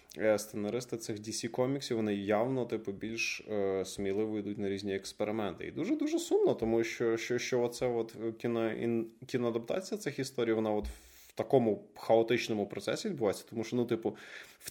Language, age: Russian, 20-39